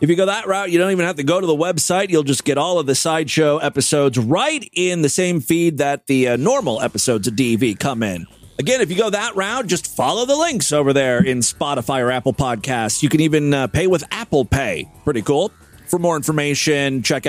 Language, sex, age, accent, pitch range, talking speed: English, male, 30-49, American, 135-225 Hz, 235 wpm